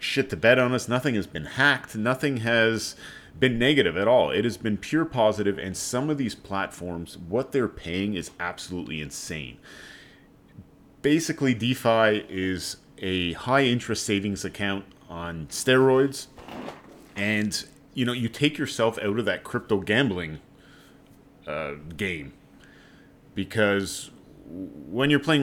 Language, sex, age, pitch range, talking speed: English, male, 30-49, 95-125 Hz, 135 wpm